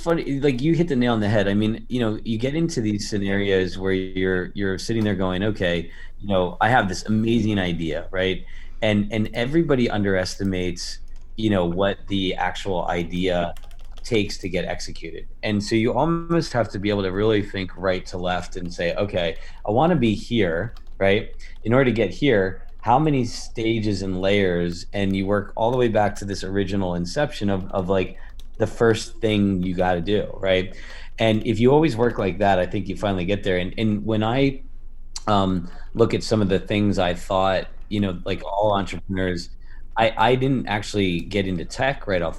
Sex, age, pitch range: male, 30-49, 90-110 Hz